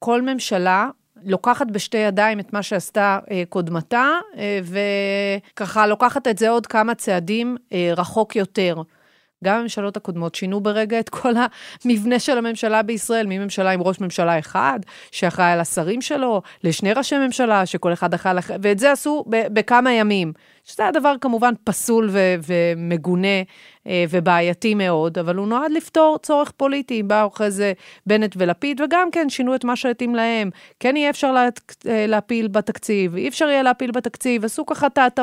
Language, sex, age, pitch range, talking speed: Hebrew, female, 30-49, 185-245 Hz, 155 wpm